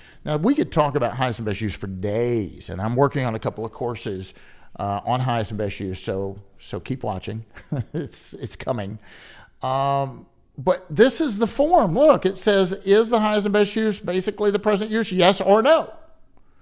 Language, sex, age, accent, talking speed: English, male, 50-69, American, 195 wpm